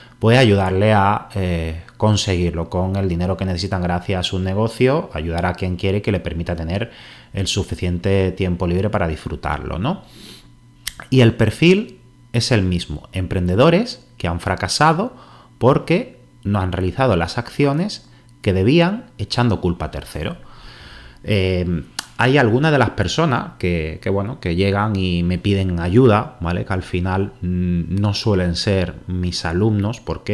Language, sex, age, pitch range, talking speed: Spanish, male, 30-49, 90-110 Hz, 150 wpm